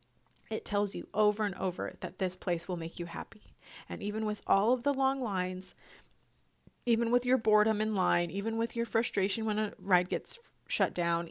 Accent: American